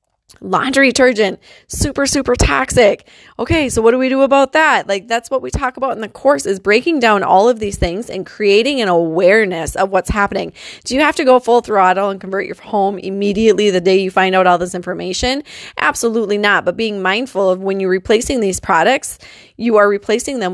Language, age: English, 20-39